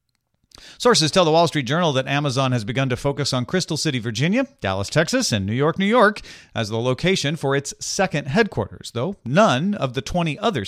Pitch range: 110-160 Hz